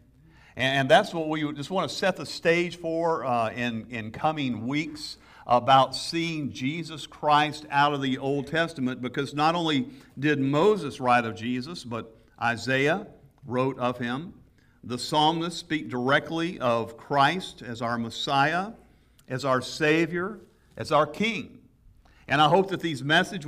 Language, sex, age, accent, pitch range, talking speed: English, male, 50-69, American, 125-160 Hz, 150 wpm